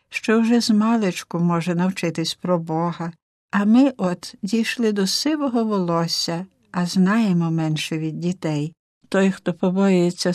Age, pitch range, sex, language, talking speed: 60-79, 170-200 Hz, female, Ukrainian, 135 wpm